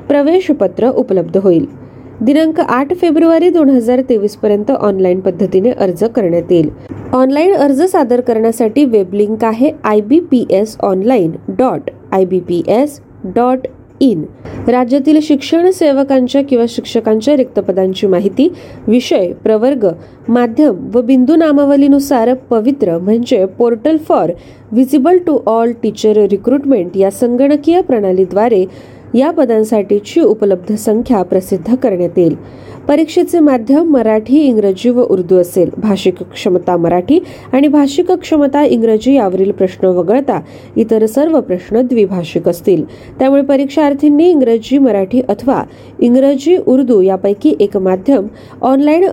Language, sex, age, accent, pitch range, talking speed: Marathi, female, 20-39, native, 200-280 Hz, 105 wpm